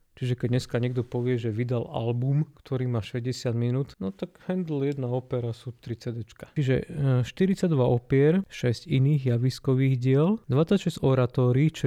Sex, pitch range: male, 120-135 Hz